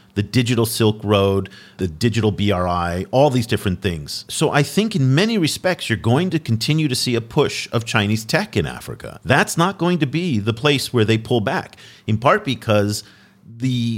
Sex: male